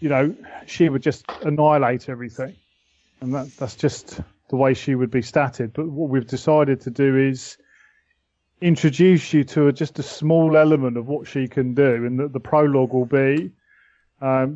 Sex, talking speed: male, 180 wpm